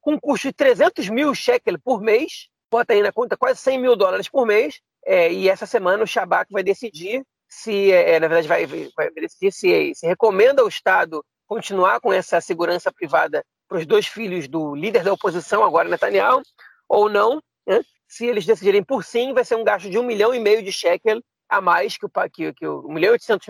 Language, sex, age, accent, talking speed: Portuguese, male, 40-59, Brazilian, 205 wpm